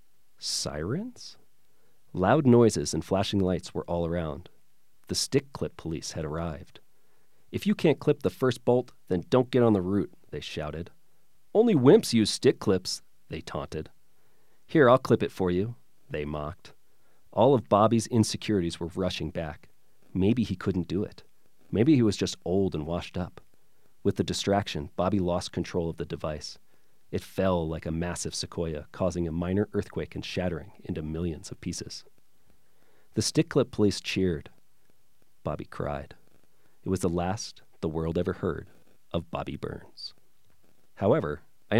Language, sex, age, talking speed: English, male, 40-59, 160 wpm